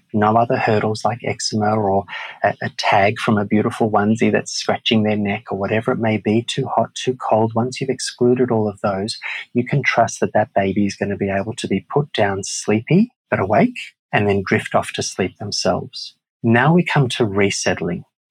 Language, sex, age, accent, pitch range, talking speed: English, male, 30-49, Australian, 105-125 Hz, 205 wpm